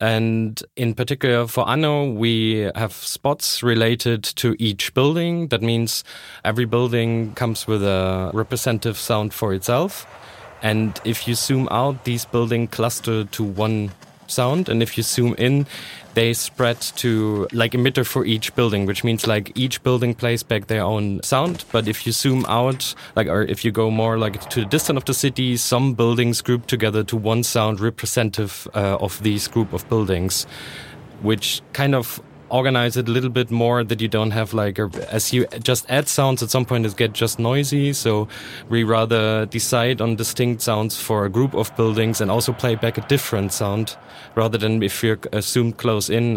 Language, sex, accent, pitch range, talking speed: English, male, German, 110-125 Hz, 180 wpm